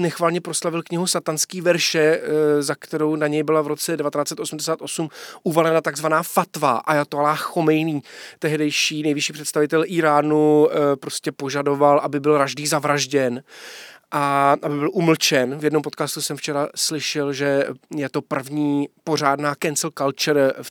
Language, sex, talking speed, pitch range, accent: Czech, male, 135 wpm, 145-170 Hz, native